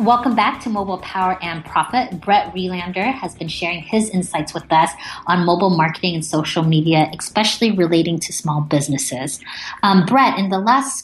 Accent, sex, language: American, female, English